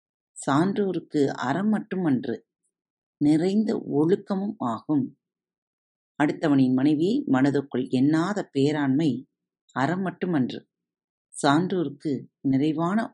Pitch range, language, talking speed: 140-205 Hz, Tamil, 70 wpm